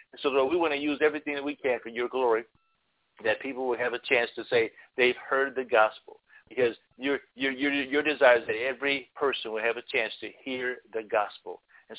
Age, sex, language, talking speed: 50-69, male, English, 225 wpm